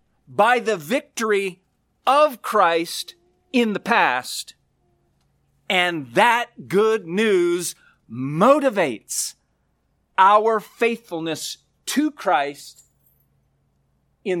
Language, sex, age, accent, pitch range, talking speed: English, male, 40-59, American, 135-225 Hz, 75 wpm